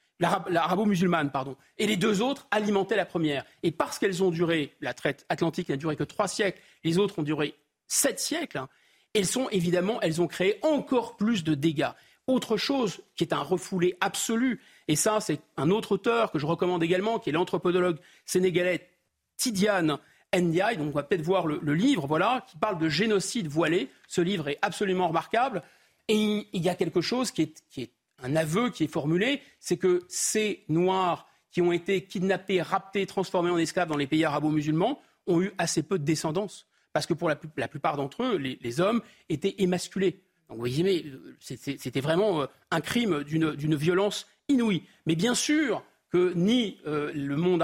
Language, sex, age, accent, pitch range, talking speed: French, male, 40-59, French, 160-200 Hz, 195 wpm